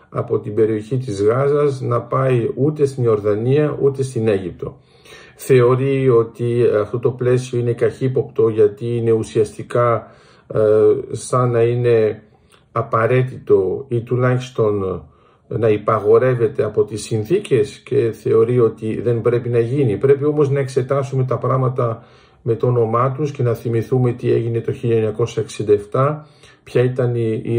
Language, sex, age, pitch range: Greek, male, 50-69, 115-140 Hz